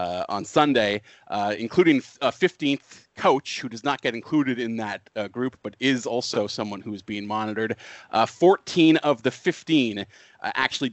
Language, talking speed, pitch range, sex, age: English, 170 wpm, 115-145 Hz, male, 30-49